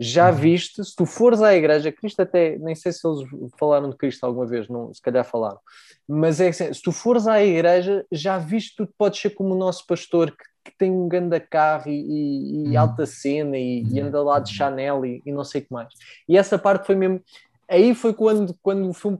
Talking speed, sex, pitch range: 230 wpm, male, 145-190 Hz